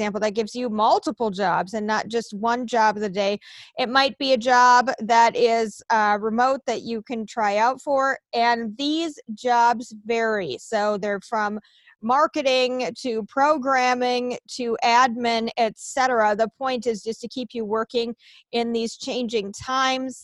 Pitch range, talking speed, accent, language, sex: 225-255 Hz, 155 wpm, American, English, female